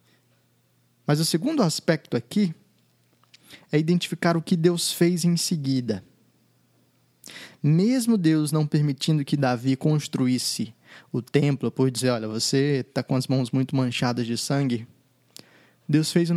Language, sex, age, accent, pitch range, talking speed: Portuguese, male, 20-39, Brazilian, 125-155 Hz, 135 wpm